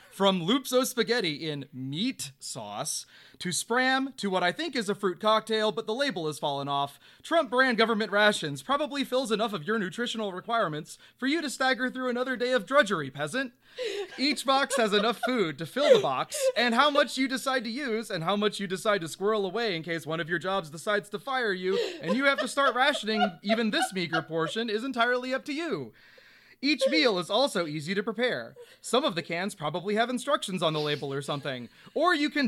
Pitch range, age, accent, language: 195-275 Hz, 30-49, American, English